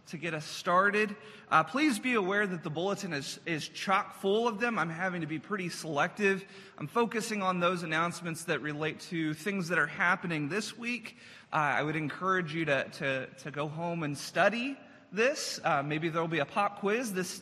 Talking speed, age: 200 wpm, 30-49